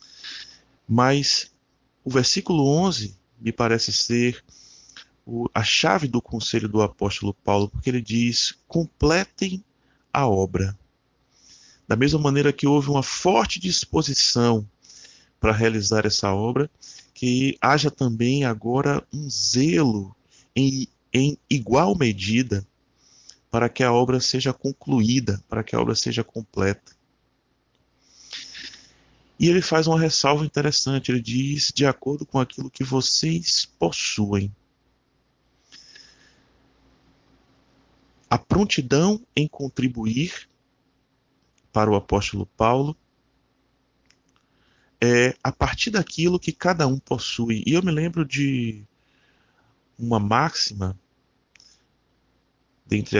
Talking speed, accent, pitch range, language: 105 wpm, Brazilian, 110-140 Hz, Portuguese